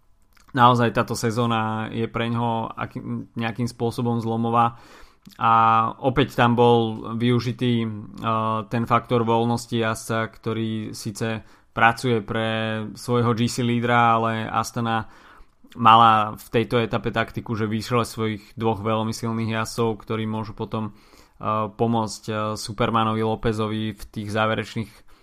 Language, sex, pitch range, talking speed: Slovak, male, 110-125 Hz, 110 wpm